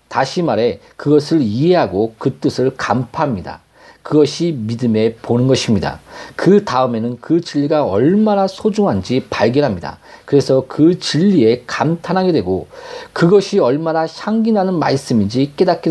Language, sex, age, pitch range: Korean, male, 40-59, 120-170 Hz